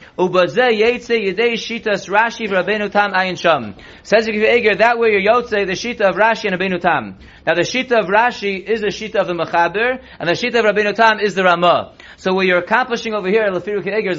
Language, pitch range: English, 185-230 Hz